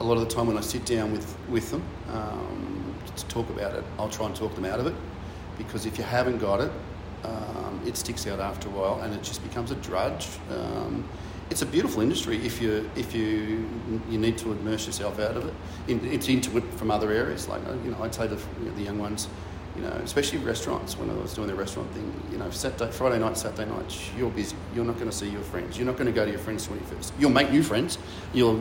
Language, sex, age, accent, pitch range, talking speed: English, male, 40-59, Australian, 95-115 Hz, 250 wpm